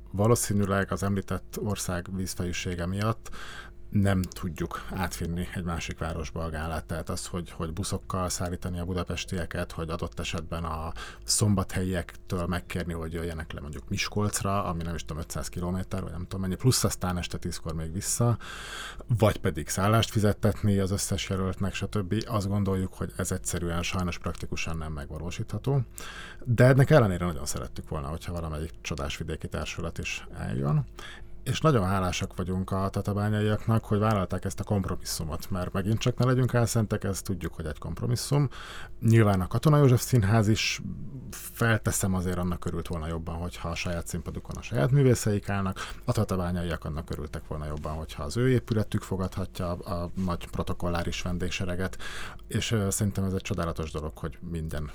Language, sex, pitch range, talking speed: Hungarian, male, 85-100 Hz, 160 wpm